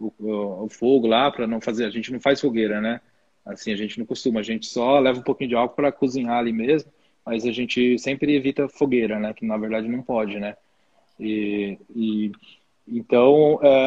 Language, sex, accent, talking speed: Portuguese, male, Brazilian, 205 wpm